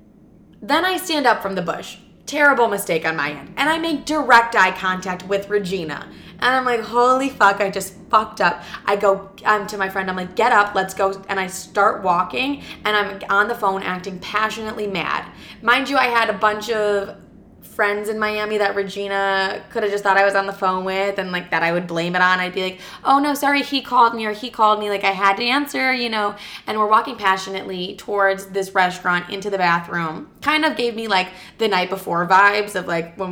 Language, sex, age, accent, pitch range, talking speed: English, female, 20-39, American, 185-220 Hz, 225 wpm